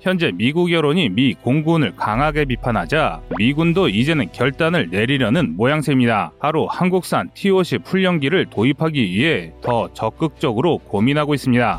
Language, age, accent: Korean, 30-49, native